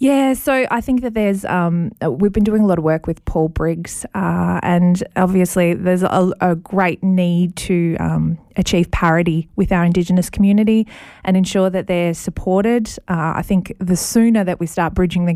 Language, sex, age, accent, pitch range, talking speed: English, female, 20-39, Australian, 165-190 Hz, 190 wpm